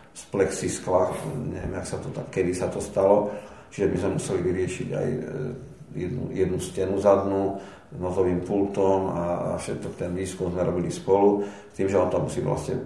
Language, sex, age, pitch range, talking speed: Slovak, male, 50-69, 85-100 Hz, 180 wpm